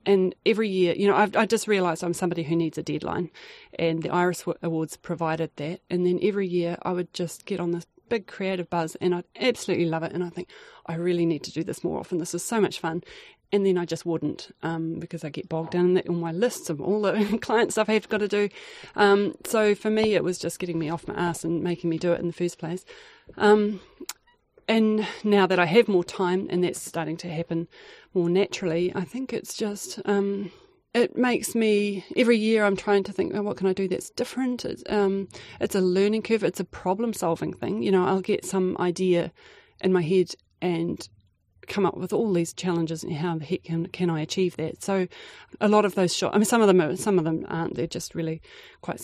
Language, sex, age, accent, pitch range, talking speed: English, female, 30-49, Australian, 170-205 Hz, 230 wpm